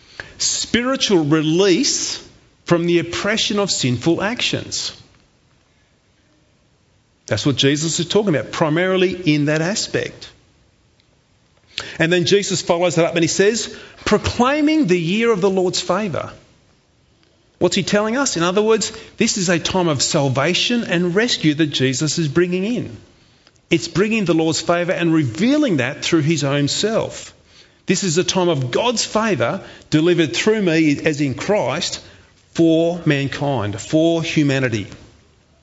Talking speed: 140 wpm